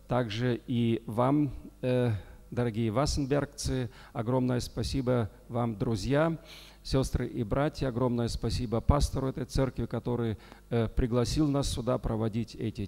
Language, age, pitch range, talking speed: Russian, 40-59, 110-135 Hz, 115 wpm